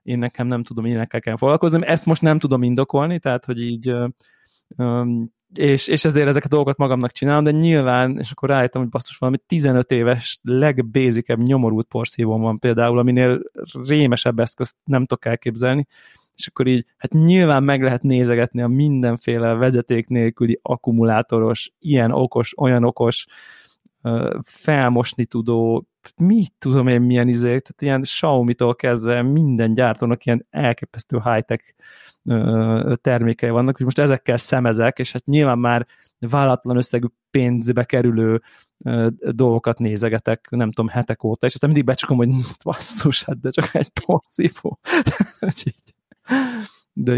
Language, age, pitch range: Hungarian, 20-39, 120-135 Hz